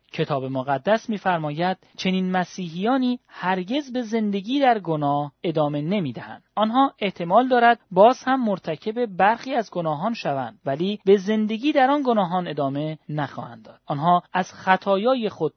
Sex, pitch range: male, 155-215 Hz